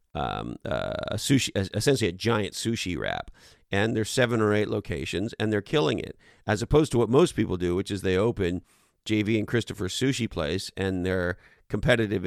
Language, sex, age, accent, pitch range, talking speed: English, male, 40-59, American, 95-110 Hz, 175 wpm